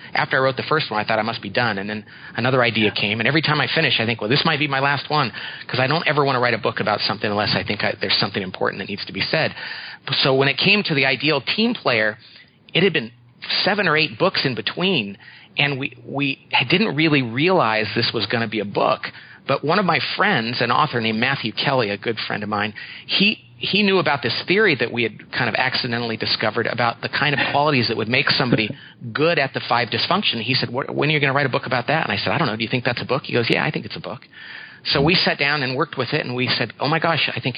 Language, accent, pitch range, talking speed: English, American, 120-150 Hz, 280 wpm